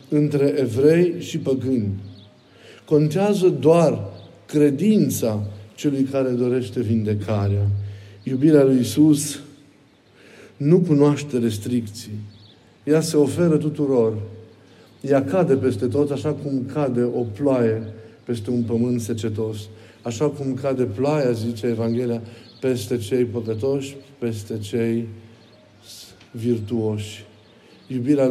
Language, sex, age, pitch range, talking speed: Romanian, male, 50-69, 115-145 Hz, 100 wpm